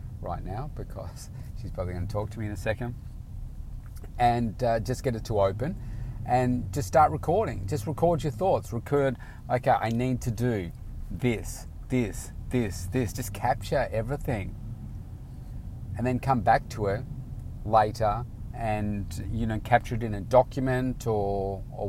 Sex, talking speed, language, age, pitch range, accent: male, 160 wpm, English, 40-59, 100-125 Hz, Australian